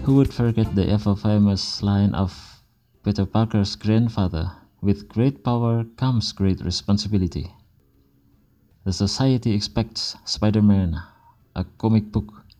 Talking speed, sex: 110 wpm, male